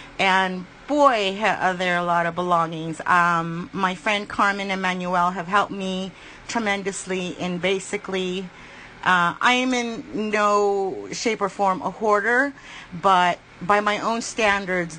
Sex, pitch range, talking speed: female, 175-205 Hz, 135 wpm